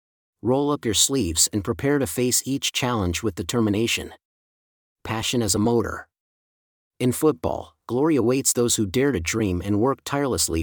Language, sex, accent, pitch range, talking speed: English, male, American, 95-130 Hz, 160 wpm